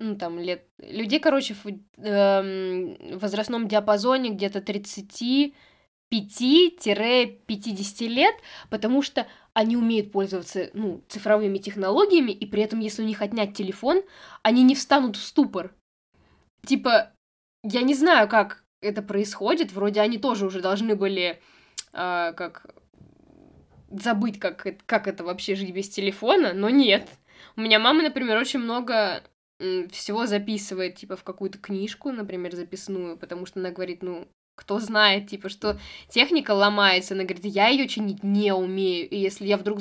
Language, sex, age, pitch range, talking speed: Russian, female, 10-29, 190-230 Hz, 145 wpm